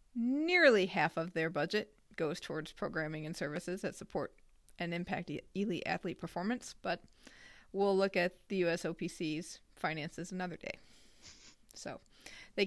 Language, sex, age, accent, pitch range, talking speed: English, female, 30-49, American, 175-205 Hz, 135 wpm